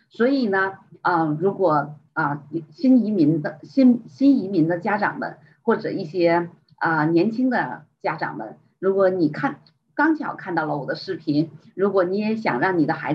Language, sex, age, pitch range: Chinese, female, 30-49, 155-205 Hz